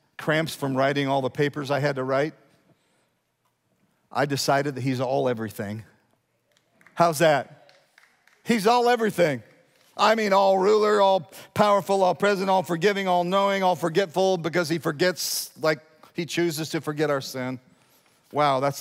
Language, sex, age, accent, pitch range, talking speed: English, male, 50-69, American, 130-170 Hz, 150 wpm